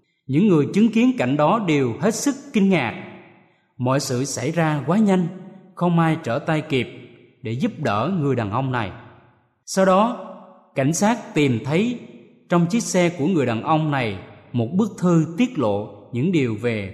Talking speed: 180 wpm